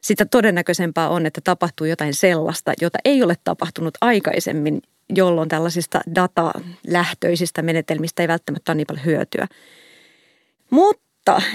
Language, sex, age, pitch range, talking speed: Finnish, female, 30-49, 165-195 Hz, 120 wpm